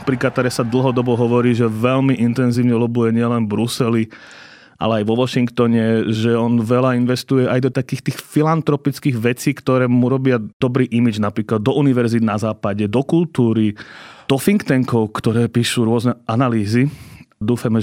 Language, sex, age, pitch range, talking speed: Slovak, male, 30-49, 120-135 Hz, 155 wpm